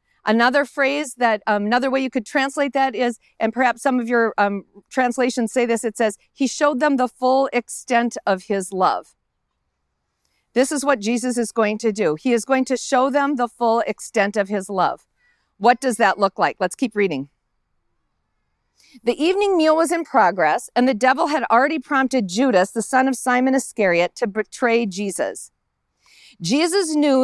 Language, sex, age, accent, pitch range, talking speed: English, female, 40-59, American, 225-290 Hz, 180 wpm